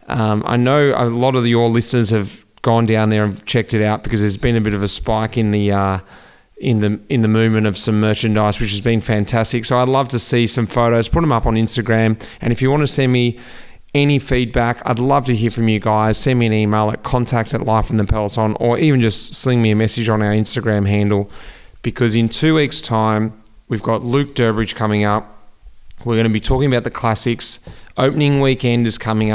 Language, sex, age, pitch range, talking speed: English, male, 30-49, 105-125 Hz, 230 wpm